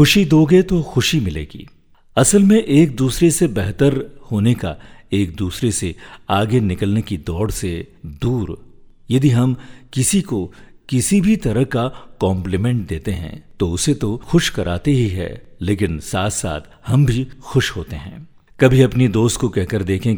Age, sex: 50-69, male